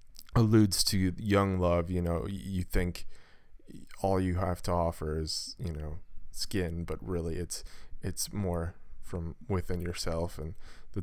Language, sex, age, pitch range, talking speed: English, male, 20-39, 85-100 Hz, 145 wpm